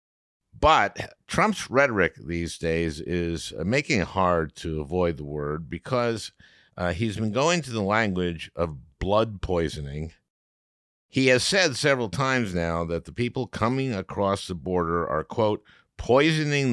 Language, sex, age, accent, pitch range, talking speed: English, male, 50-69, American, 85-115 Hz, 145 wpm